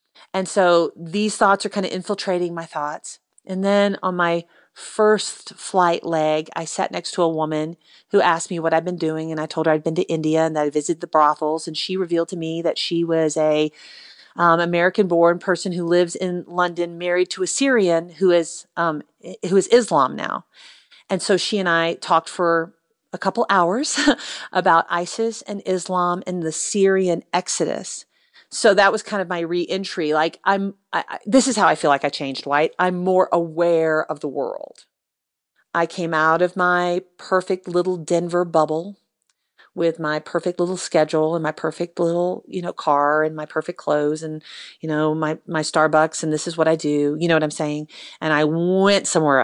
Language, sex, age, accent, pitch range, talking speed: English, female, 40-59, American, 160-190 Hz, 195 wpm